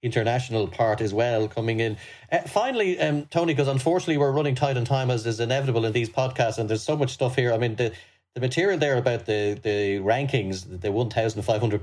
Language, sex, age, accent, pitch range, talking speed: English, male, 30-49, Irish, 110-135 Hz, 215 wpm